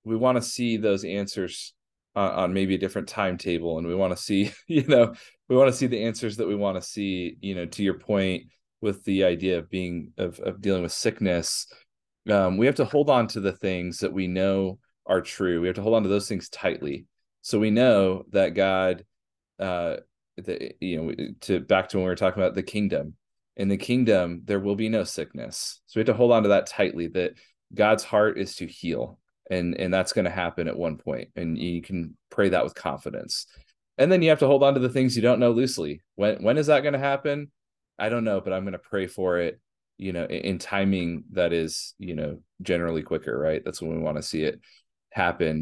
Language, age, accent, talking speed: English, 30-49, American, 235 wpm